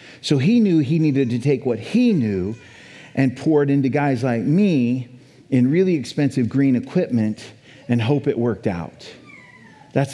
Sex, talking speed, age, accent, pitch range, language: male, 165 wpm, 50-69, American, 130-170 Hz, English